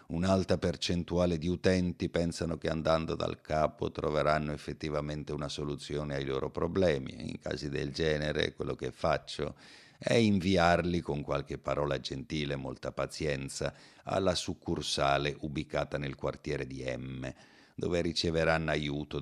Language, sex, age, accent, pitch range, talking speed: Italian, male, 50-69, native, 70-90 Hz, 130 wpm